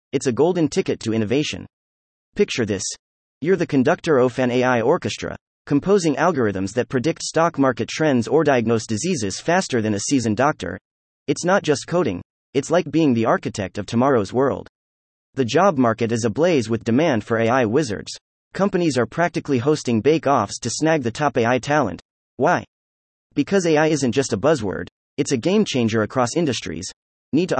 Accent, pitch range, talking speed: American, 110-160 Hz, 170 wpm